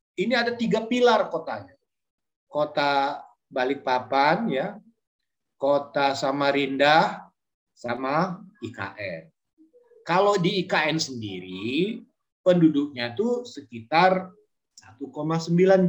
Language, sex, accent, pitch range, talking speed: Indonesian, male, native, 140-205 Hz, 75 wpm